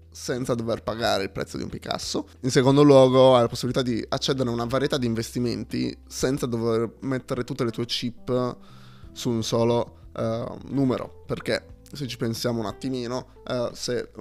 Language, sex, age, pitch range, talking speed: Italian, male, 20-39, 115-135 Hz, 165 wpm